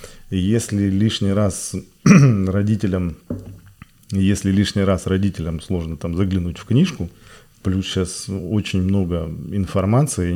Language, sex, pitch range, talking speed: Russian, male, 85-100 Hz, 80 wpm